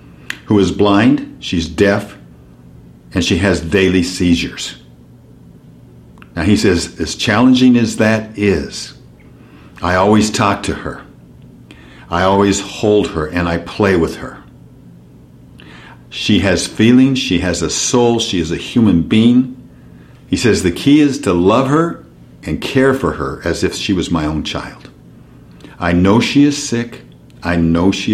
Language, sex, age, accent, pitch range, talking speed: English, male, 60-79, American, 75-110 Hz, 150 wpm